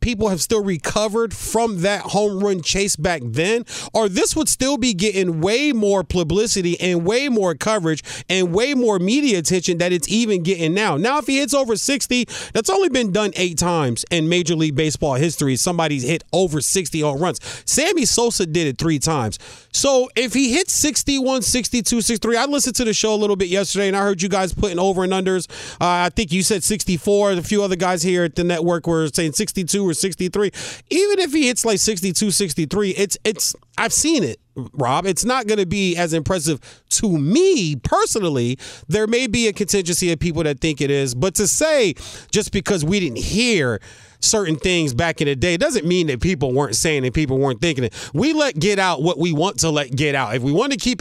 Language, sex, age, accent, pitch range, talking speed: English, male, 30-49, American, 160-220 Hz, 215 wpm